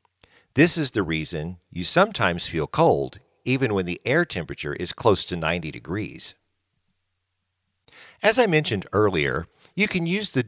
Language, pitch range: English, 90-125 Hz